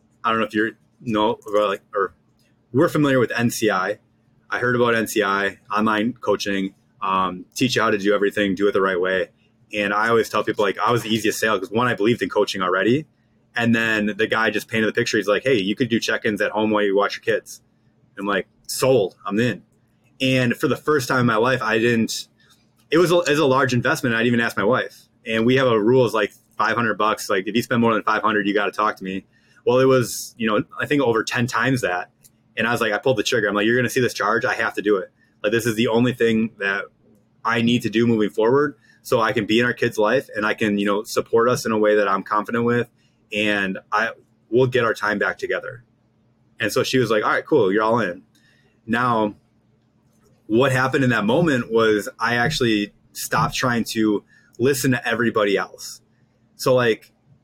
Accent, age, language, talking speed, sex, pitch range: American, 20-39, English, 235 wpm, male, 105-120 Hz